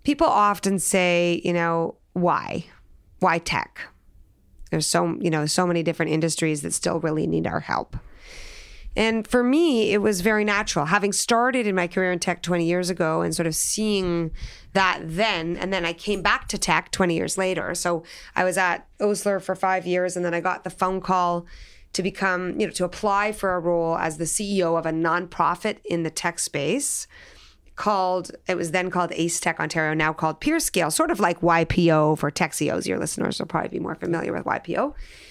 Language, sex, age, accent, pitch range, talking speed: English, female, 30-49, American, 165-200 Hz, 195 wpm